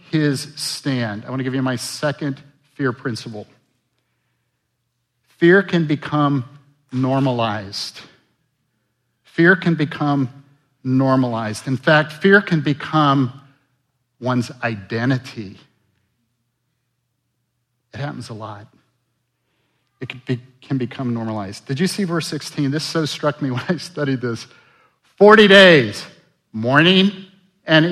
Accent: American